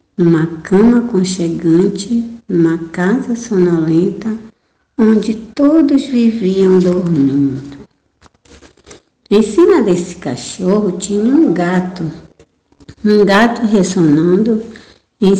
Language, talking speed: Portuguese, 80 wpm